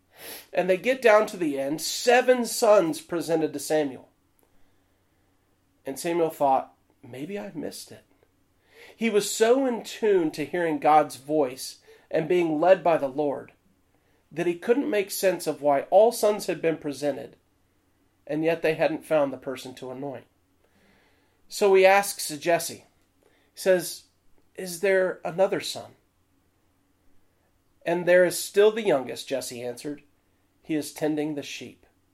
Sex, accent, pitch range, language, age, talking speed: male, American, 120-180 Hz, English, 40-59, 145 wpm